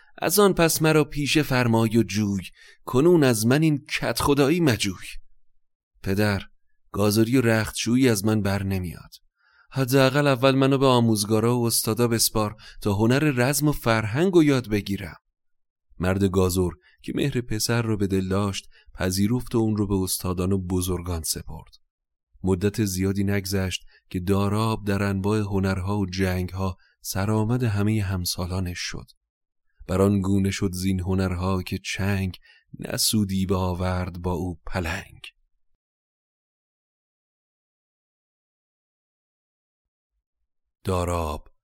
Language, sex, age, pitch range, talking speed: Persian, male, 30-49, 90-110 Hz, 120 wpm